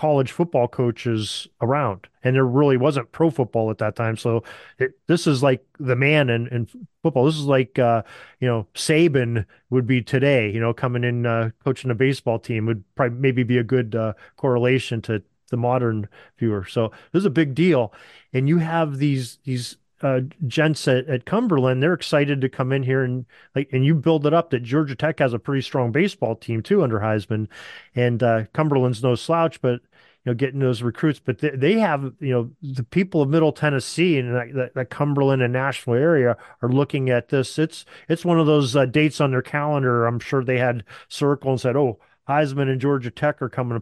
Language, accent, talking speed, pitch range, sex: English, American, 210 wpm, 120-150 Hz, male